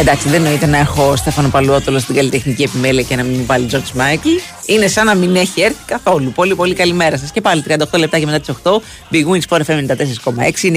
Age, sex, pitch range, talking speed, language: 30-49, female, 130-180 Hz, 225 wpm, Greek